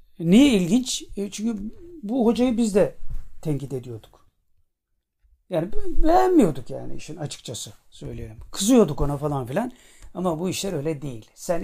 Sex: male